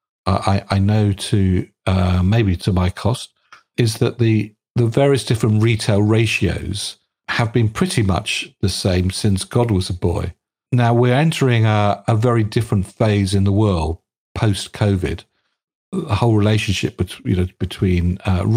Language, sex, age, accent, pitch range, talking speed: English, male, 50-69, British, 100-115 Hz, 155 wpm